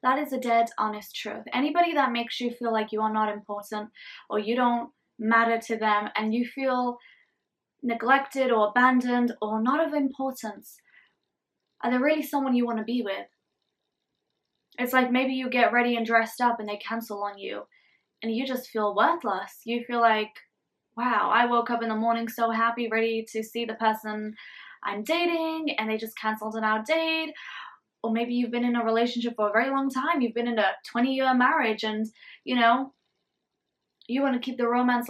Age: 10-29